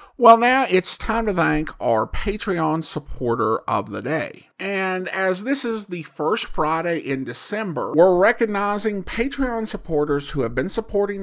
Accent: American